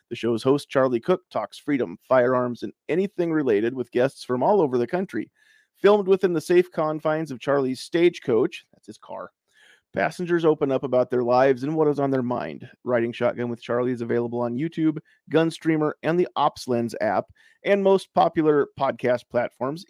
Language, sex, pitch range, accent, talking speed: English, male, 125-165 Hz, American, 180 wpm